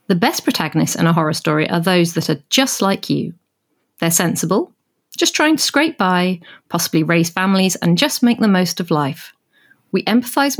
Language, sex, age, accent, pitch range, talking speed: English, female, 40-59, British, 170-235 Hz, 185 wpm